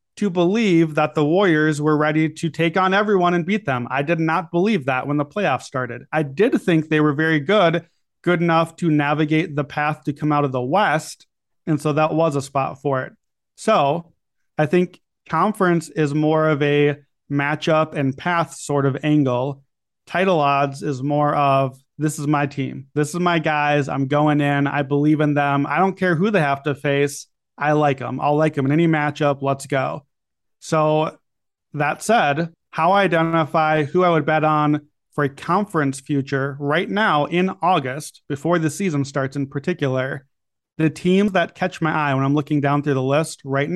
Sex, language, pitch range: male, English, 145-170 Hz